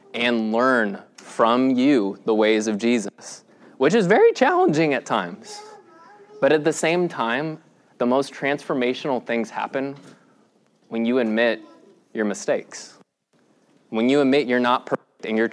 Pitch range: 110-140 Hz